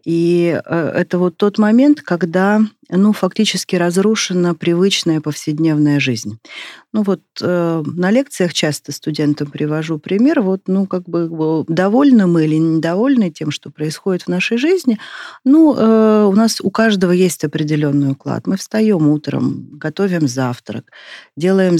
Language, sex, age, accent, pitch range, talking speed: Russian, female, 40-59, native, 155-195 Hz, 125 wpm